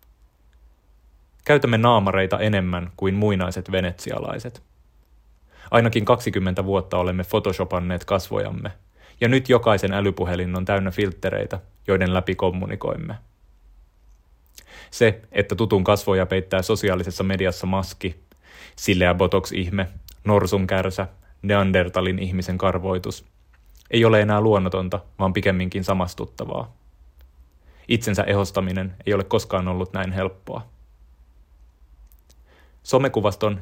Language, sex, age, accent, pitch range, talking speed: Finnish, male, 30-49, native, 85-100 Hz, 95 wpm